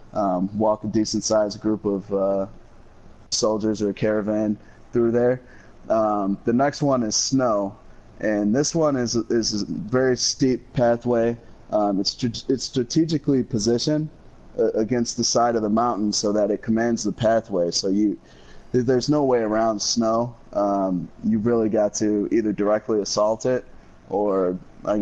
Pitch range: 105-125 Hz